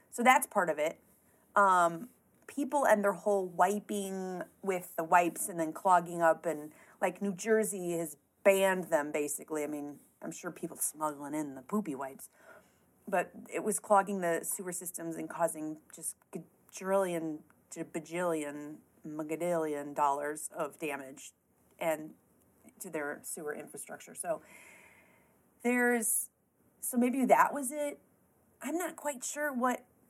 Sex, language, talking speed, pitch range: female, English, 140 wpm, 160-215 Hz